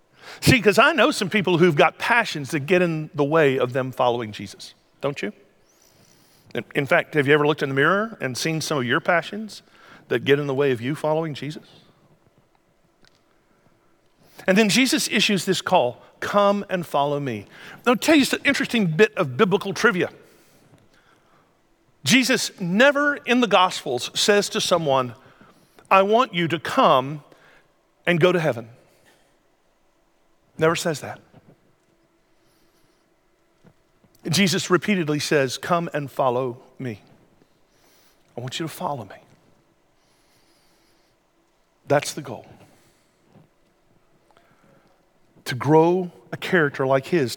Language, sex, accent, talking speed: English, male, American, 135 wpm